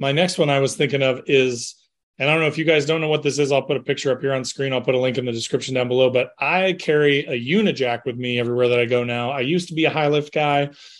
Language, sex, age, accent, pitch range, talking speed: English, male, 30-49, American, 130-160 Hz, 310 wpm